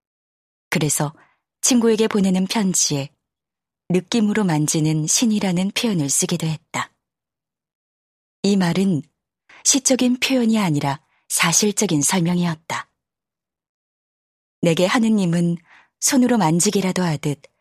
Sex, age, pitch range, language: female, 20-39, 155-215 Hz, Korean